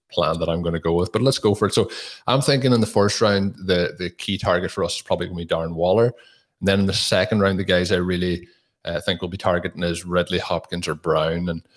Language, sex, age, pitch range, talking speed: English, male, 30-49, 90-105 Hz, 270 wpm